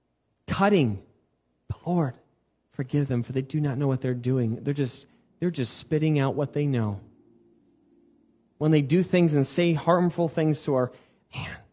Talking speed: 170 wpm